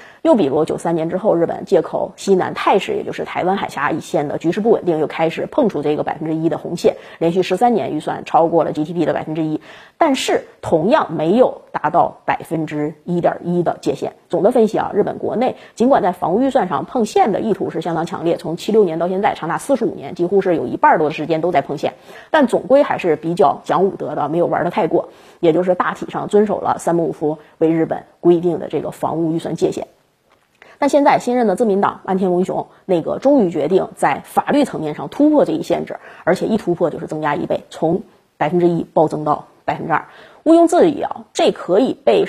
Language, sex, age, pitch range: Chinese, female, 20-39, 160-245 Hz